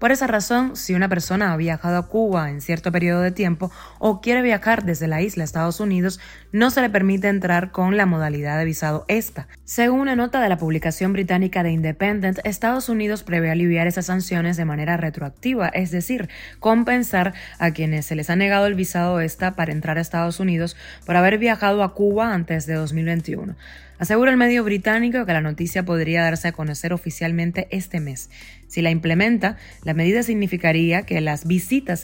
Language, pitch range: Spanish, 165-205 Hz